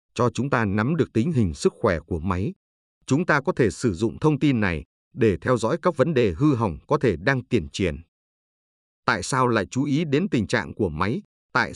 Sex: male